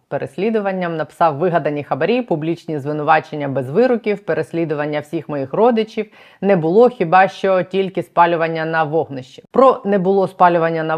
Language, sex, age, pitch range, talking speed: Ukrainian, female, 20-39, 145-180 Hz, 135 wpm